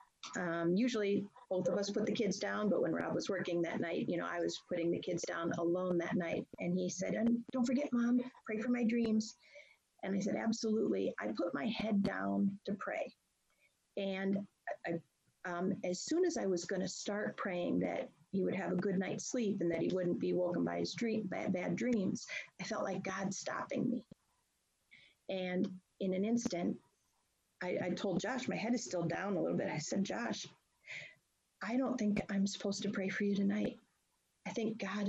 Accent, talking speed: American, 200 wpm